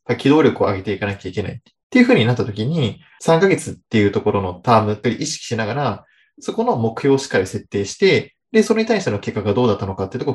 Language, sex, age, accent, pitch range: Japanese, male, 20-39, native, 105-165 Hz